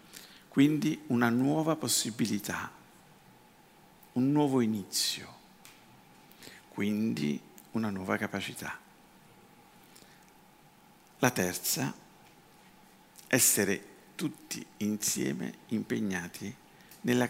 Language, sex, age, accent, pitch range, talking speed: Italian, male, 50-69, native, 105-140 Hz, 60 wpm